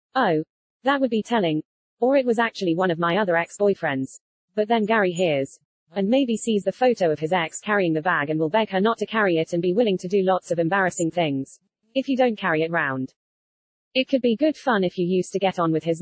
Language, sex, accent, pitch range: English, female, British, 165-220 Hz